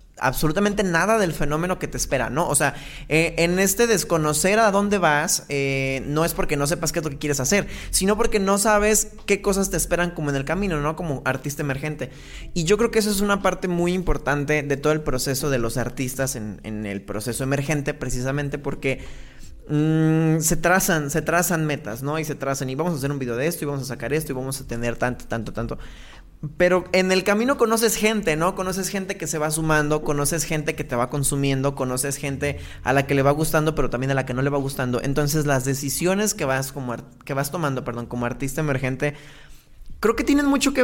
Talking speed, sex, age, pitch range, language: 220 wpm, male, 20-39, 140-180 Hz, Spanish